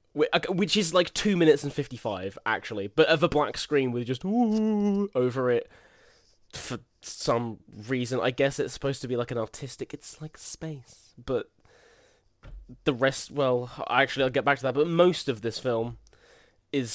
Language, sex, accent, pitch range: English, male, British, 125-165 Hz